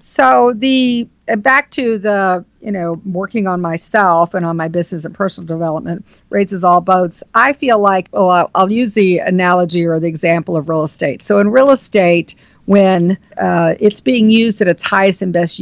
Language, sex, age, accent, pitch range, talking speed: English, female, 50-69, American, 170-215 Hz, 185 wpm